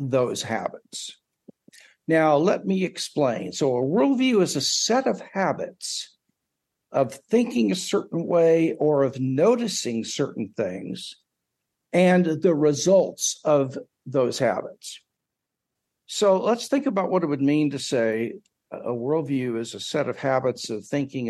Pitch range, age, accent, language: 135-190 Hz, 60-79, American, English